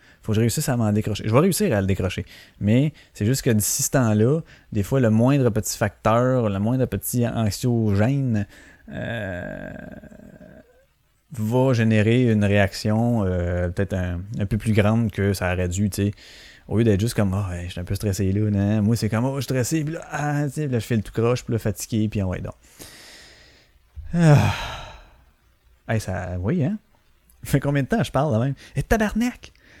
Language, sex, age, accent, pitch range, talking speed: French, male, 30-49, Canadian, 100-140 Hz, 205 wpm